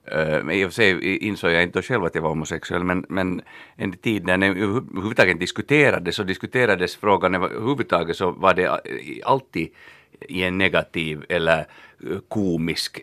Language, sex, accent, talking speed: Swedish, male, Finnish, 140 wpm